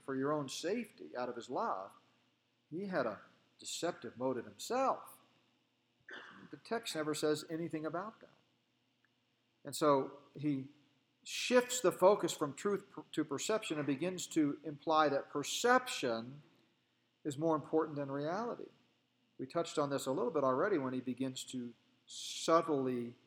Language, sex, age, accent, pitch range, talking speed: English, male, 50-69, American, 130-180 Hz, 140 wpm